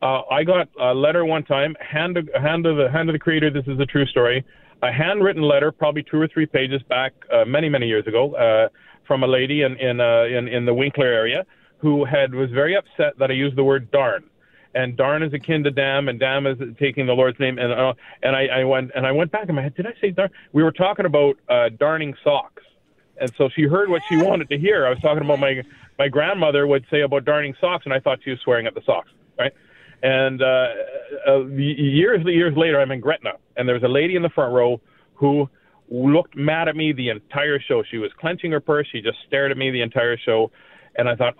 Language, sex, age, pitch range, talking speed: English, male, 40-59, 130-160 Hz, 240 wpm